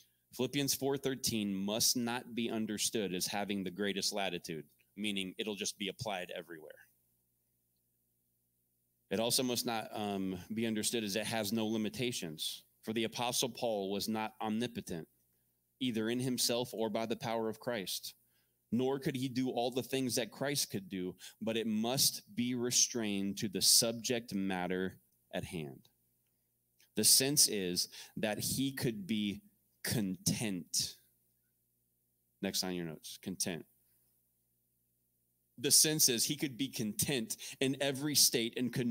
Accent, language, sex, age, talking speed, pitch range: American, English, male, 20-39, 140 wpm, 80-125 Hz